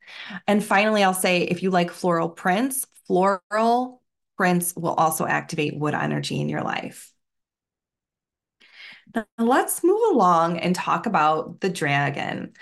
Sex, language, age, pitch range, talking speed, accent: female, English, 20-39, 165-200 Hz, 130 wpm, American